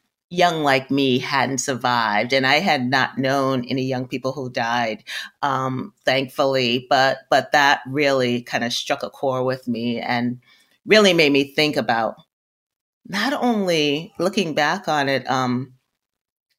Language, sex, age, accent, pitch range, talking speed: English, female, 30-49, American, 130-160 Hz, 150 wpm